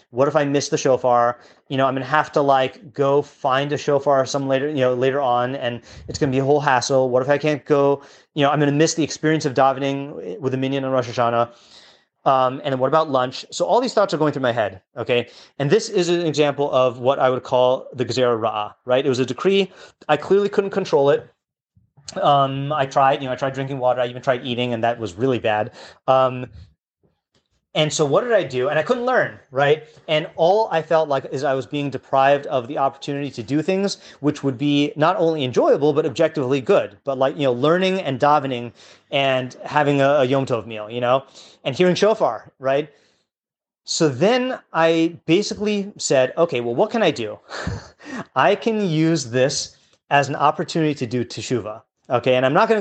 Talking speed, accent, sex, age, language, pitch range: 220 wpm, American, male, 30-49, English, 130-155 Hz